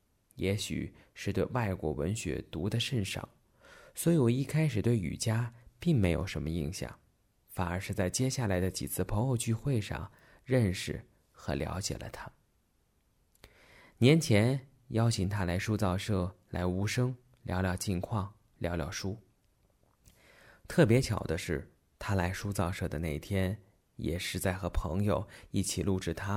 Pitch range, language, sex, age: 90-115 Hz, Chinese, male, 20-39